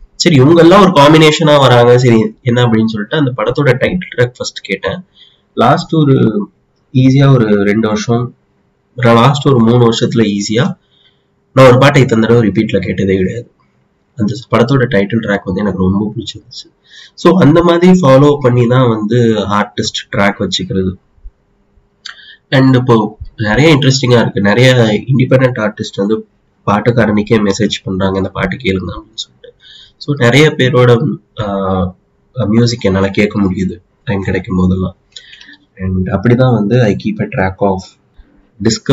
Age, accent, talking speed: 30-49, native, 120 wpm